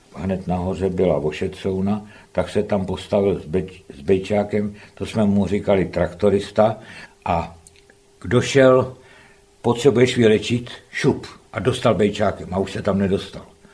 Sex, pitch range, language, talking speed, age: male, 90-105 Hz, Czech, 135 wpm, 60-79